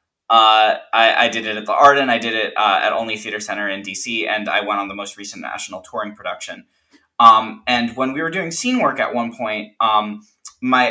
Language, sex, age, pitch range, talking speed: English, male, 20-39, 100-130 Hz, 230 wpm